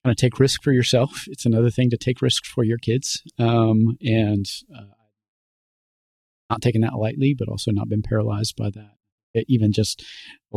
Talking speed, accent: 185 wpm, American